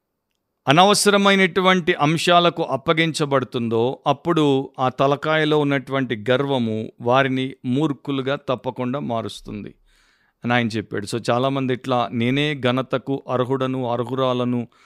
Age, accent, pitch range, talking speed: 50-69, native, 130-150 Hz, 90 wpm